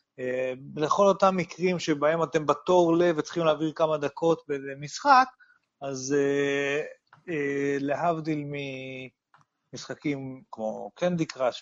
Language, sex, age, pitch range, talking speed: Hebrew, male, 30-49, 135-170 Hz, 95 wpm